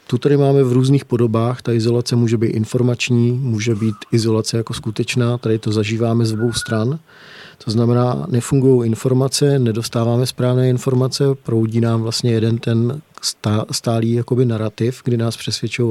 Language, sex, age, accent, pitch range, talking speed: Czech, male, 40-59, native, 115-135 Hz, 150 wpm